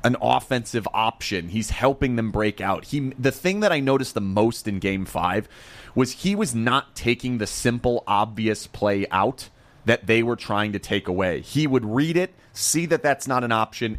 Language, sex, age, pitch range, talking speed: English, male, 30-49, 105-155 Hz, 195 wpm